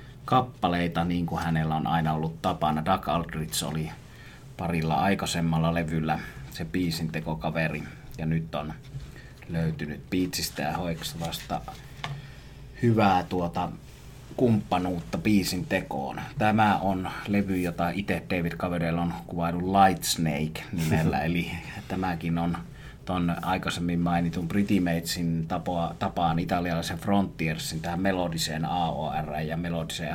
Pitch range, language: 80-95 Hz, Finnish